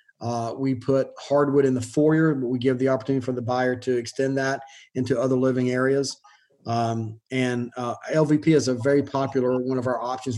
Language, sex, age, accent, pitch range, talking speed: English, male, 30-49, American, 125-140 Hz, 195 wpm